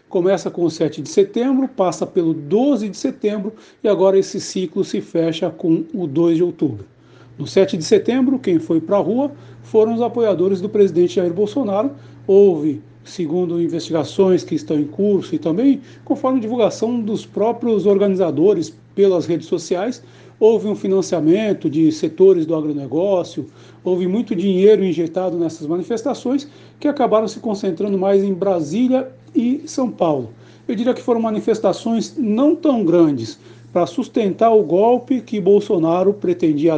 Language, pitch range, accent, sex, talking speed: Portuguese, 165-225 Hz, Brazilian, male, 150 wpm